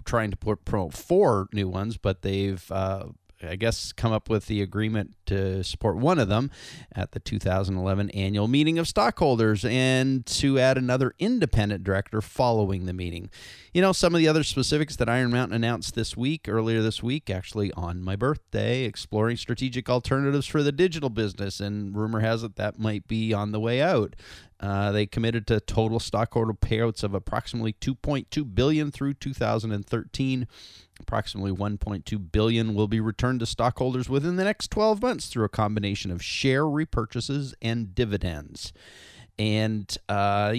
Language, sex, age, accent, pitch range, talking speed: English, male, 30-49, American, 100-125 Hz, 165 wpm